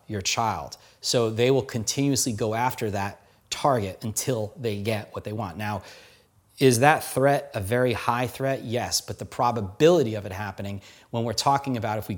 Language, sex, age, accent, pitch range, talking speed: English, male, 30-49, American, 105-125 Hz, 180 wpm